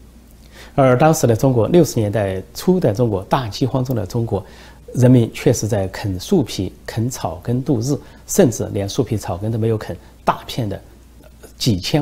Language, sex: Chinese, male